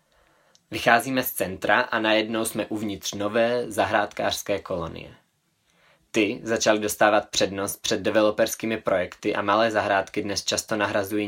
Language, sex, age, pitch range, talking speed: Czech, male, 20-39, 100-115 Hz, 120 wpm